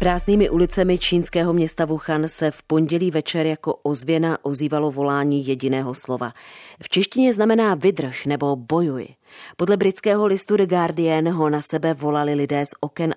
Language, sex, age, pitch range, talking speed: Czech, female, 30-49, 140-170 Hz, 150 wpm